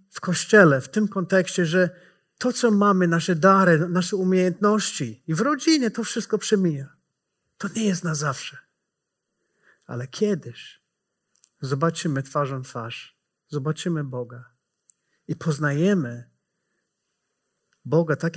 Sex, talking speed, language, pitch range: male, 115 wpm, Polish, 135-185 Hz